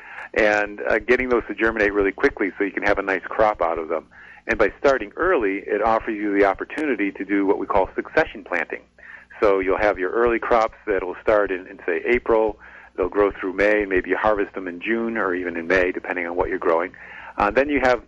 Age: 50-69